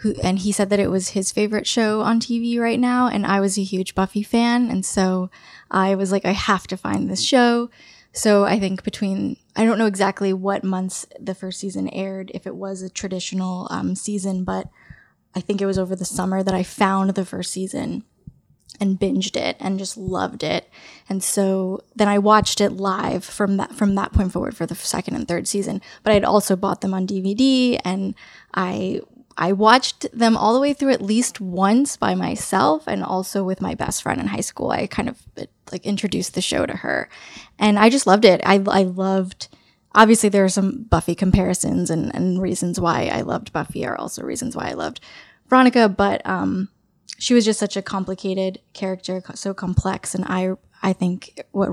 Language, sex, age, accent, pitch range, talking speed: English, female, 10-29, American, 185-210 Hz, 205 wpm